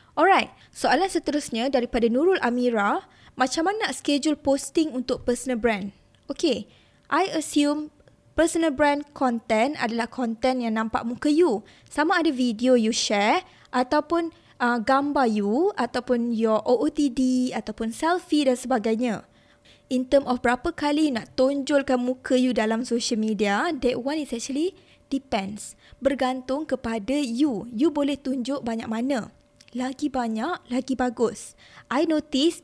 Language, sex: Malay, female